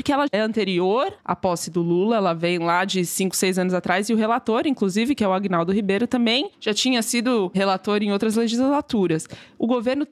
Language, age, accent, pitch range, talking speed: Portuguese, 20-39, Brazilian, 190-240 Hz, 210 wpm